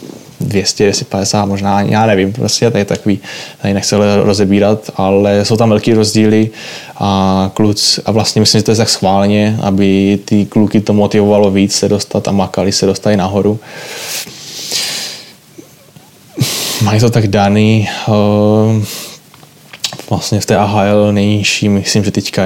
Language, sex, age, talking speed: Czech, male, 20-39, 140 wpm